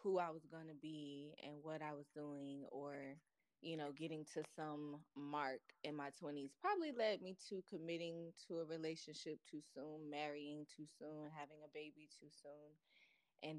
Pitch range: 145-175 Hz